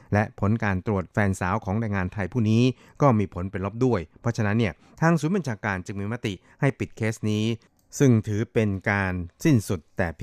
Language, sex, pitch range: Thai, male, 95-115 Hz